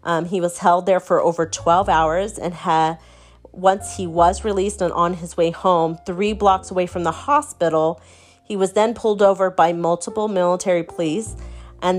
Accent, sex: American, female